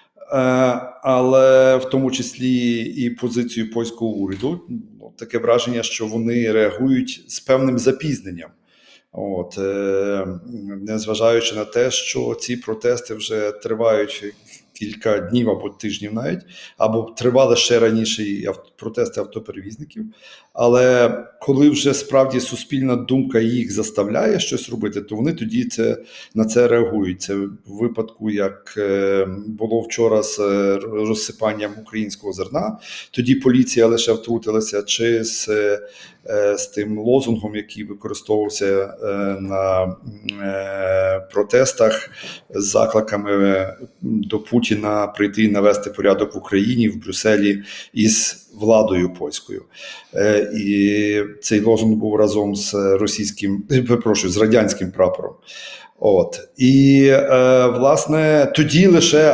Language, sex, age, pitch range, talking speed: Ukrainian, male, 40-59, 105-130 Hz, 110 wpm